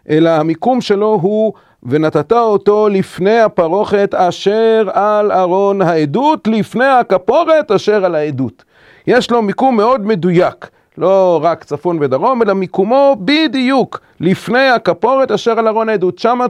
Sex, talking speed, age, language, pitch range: male, 130 wpm, 40-59, Hebrew, 150-230 Hz